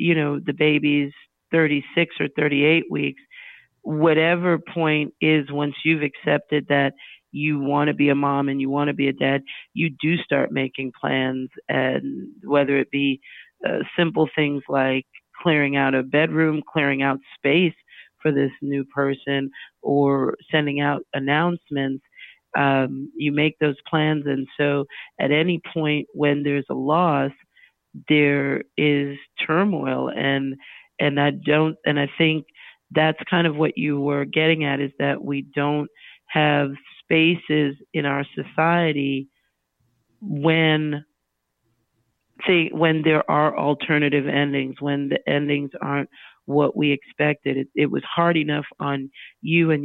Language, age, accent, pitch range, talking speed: English, 40-59, American, 140-155 Hz, 145 wpm